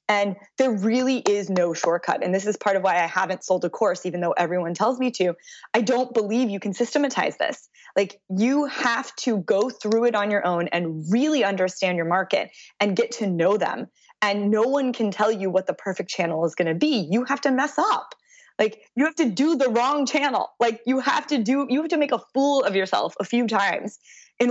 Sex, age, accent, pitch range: female, 20-39, American, 190-250 Hz